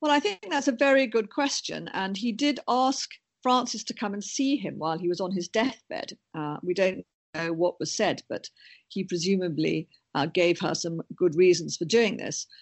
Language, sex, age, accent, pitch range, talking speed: English, female, 50-69, British, 175-245 Hz, 205 wpm